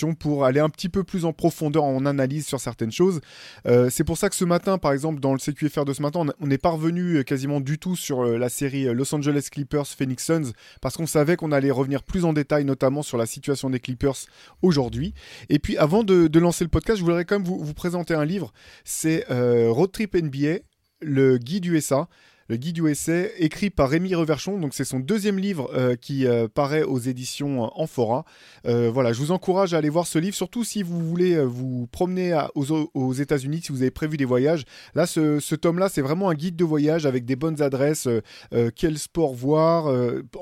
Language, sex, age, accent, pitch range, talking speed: French, male, 20-39, French, 130-165 Hz, 220 wpm